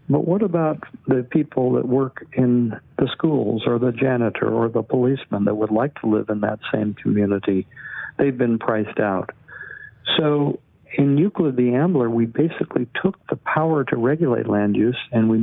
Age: 60-79